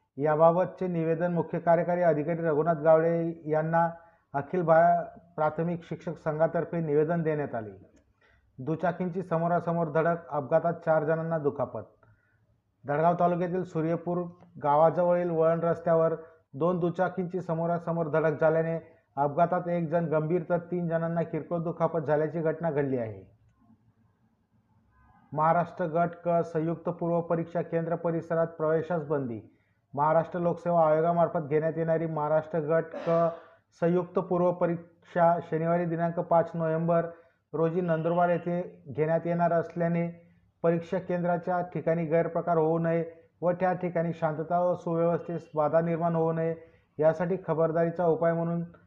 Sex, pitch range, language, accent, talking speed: male, 160-170 Hz, Marathi, native, 115 wpm